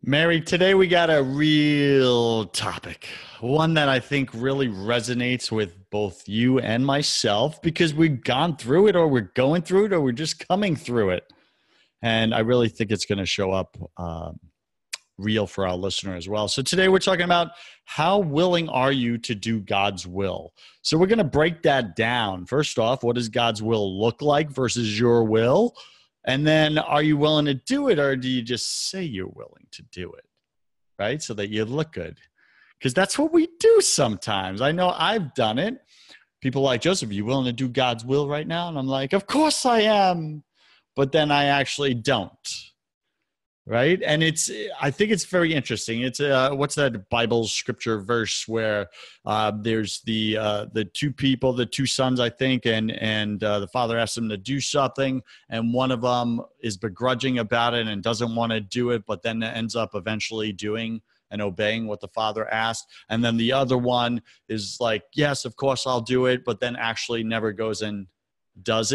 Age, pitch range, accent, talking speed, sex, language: 30-49, 110-145 Hz, American, 195 wpm, male, English